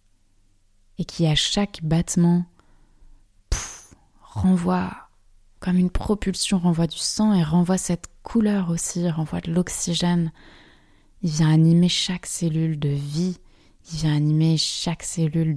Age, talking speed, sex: 20-39, 125 wpm, female